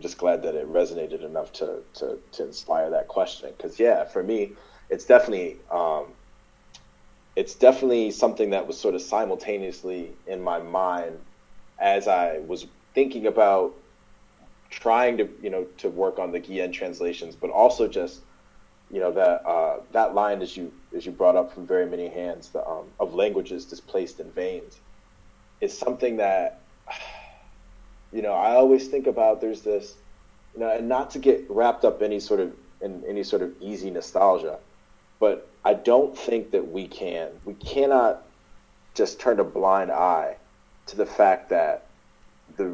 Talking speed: 165 wpm